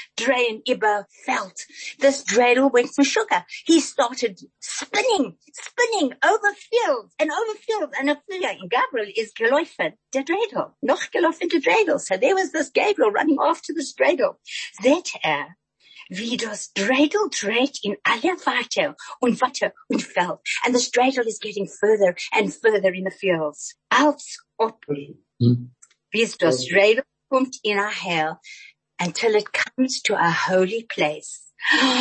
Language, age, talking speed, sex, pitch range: English, 50-69, 145 wpm, female, 200-300 Hz